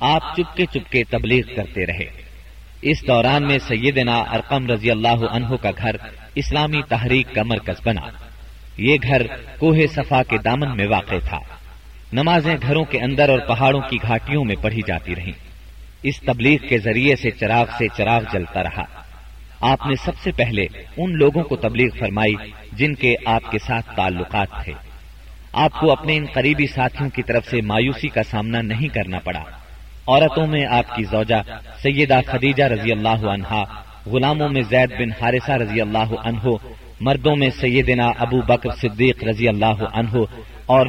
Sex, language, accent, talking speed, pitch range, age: male, English, Indian, 155 wpm, 110-135 Hz, 40-59